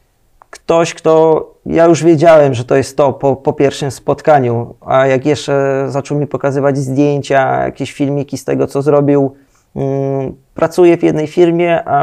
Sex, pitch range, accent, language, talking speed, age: male, 130-155 Hz, native, Polish, 160 wpm, 20-39